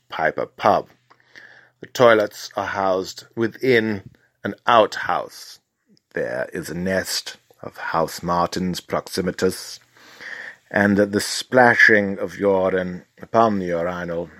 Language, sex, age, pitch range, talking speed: English, male, 50-69, 95-105 Hz, 105 wpm